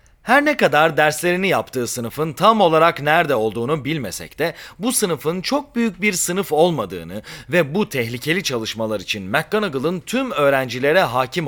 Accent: native